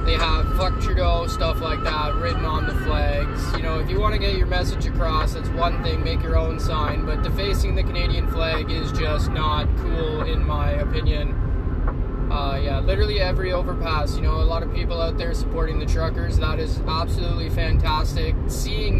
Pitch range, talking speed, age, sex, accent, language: 80-90 Hz, 195 wpm, 20-39, male, American, English